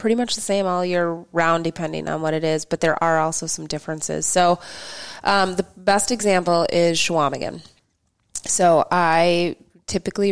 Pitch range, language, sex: 155-180 Hz, English, female